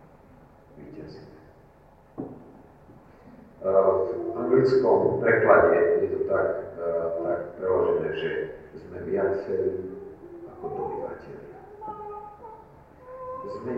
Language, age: Slovak, 40-59